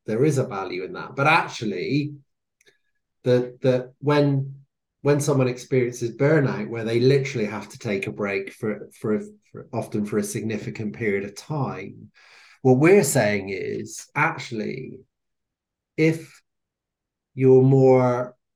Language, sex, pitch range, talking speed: English, male, 110-145 Hz, 135 wpm